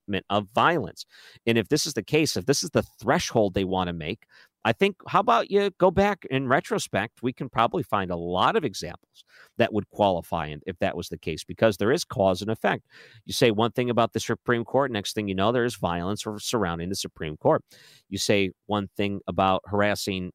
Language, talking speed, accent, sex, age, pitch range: English, 210 wpm, American, male, 50-69, 100-125 Hz